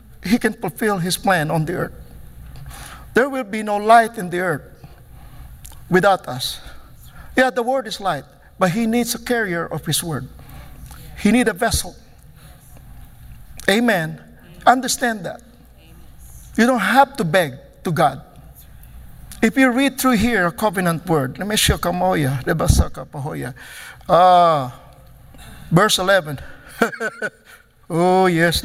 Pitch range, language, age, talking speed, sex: 165-225 Hz, English, 50-69, 130 wpm, male